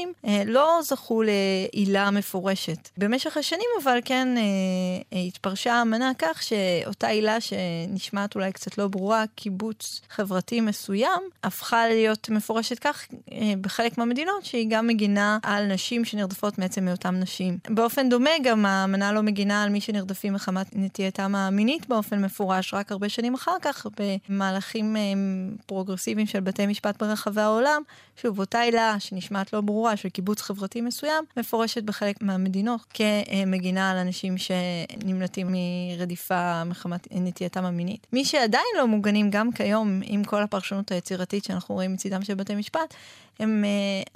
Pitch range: 195-225 Hz